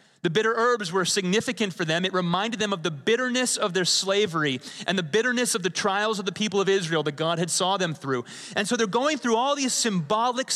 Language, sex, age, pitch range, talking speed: English, male, 30-49, 160-225 Hz, 235 wpm